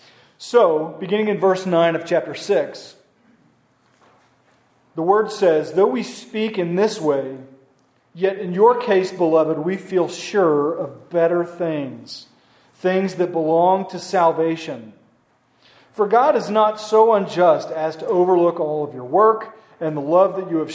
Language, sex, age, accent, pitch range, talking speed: English, male, 40-59, American, 160-200 Hz, 150 wpm